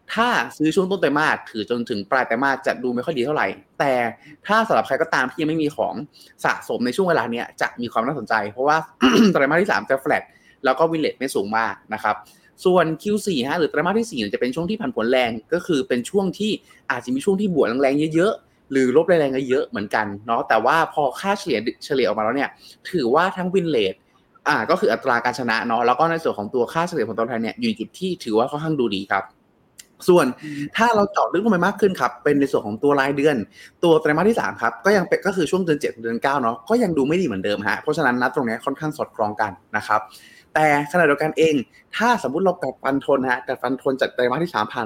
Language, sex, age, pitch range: Thai, male, 20-39, 120-175 Hz